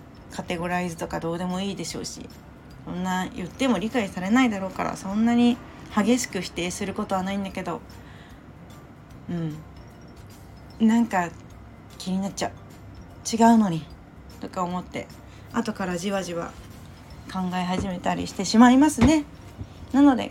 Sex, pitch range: female, 180-230 Hz